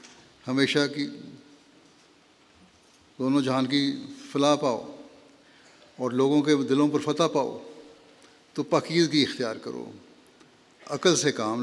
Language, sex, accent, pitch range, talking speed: English, male, Indian, 125-145 Hz, 110 wpm